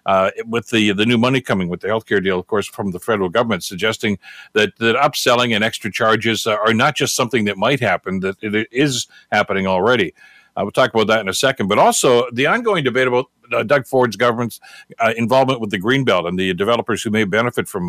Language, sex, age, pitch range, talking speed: English, male, 60-79, 110-135 Hz, 225 wpm